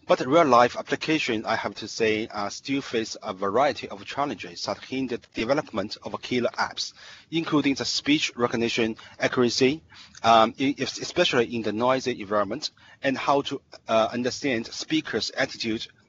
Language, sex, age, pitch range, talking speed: English, male, 40-59, 115-140 Hz, 145 wpm